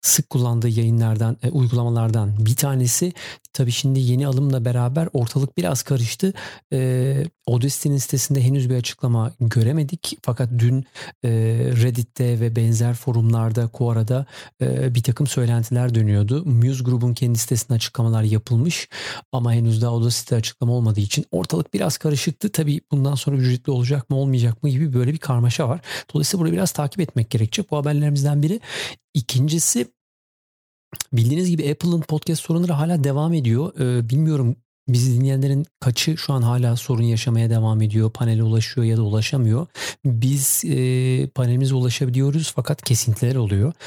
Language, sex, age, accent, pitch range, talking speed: Turkish, male, 40-59, native, 115-140 Hz, 145 wpm